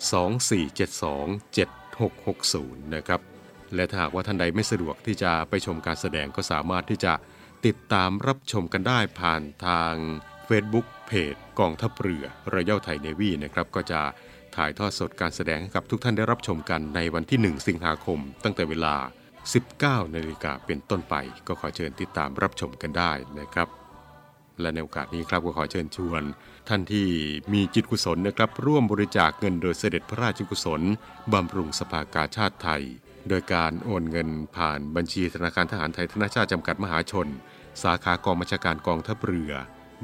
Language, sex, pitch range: Thai, male, 80-100 Hz